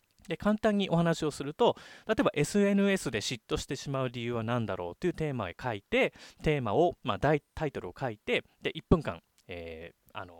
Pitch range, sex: 100-160 Hz, male